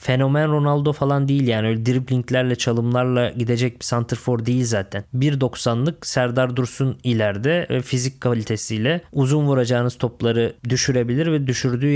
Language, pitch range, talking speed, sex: Turkish, 120-140 Hz, 125 wpm, male